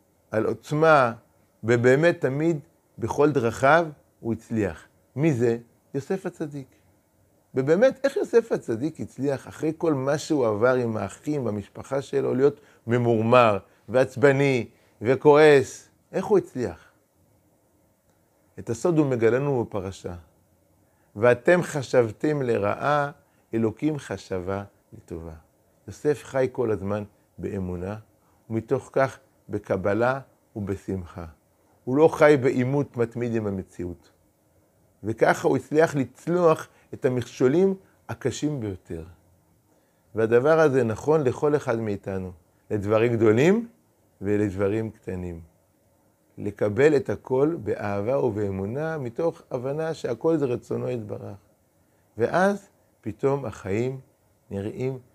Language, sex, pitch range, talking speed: Hebrew, male, 100-140 Hz, 100 wpm